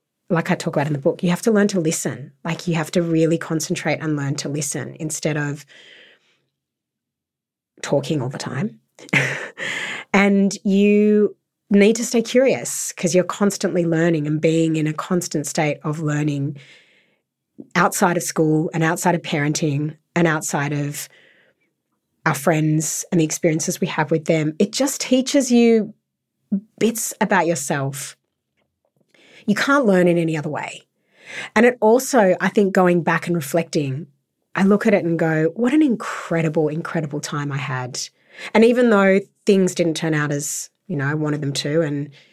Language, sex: English, female